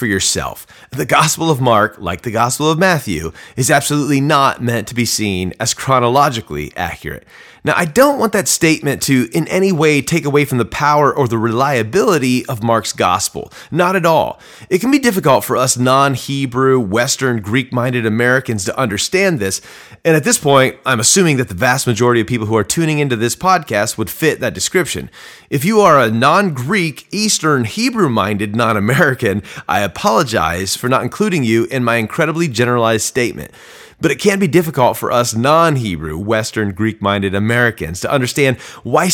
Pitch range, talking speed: 115-160 Hz, 170 wpm